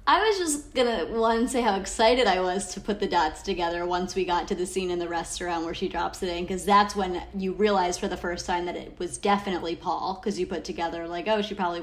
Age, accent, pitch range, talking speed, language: 30-49, American, 175-210 Hz, 265 wpm, English